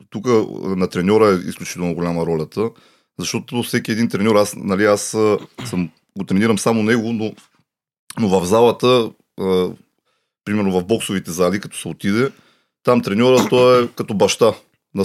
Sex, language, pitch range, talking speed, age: male, Bulgarian, 95-120 Hz, 150 wpm, 30-49